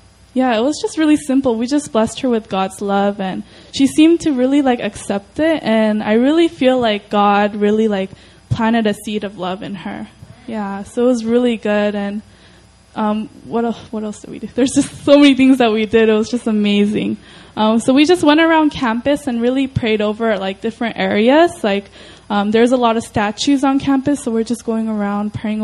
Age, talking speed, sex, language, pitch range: 10-29, 215 wpm, female, English, 210-250 Hz